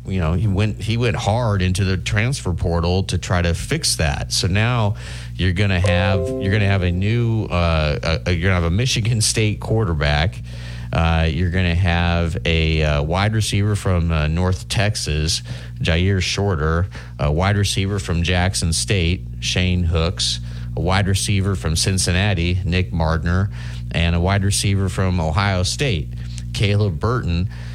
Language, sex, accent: English, male, American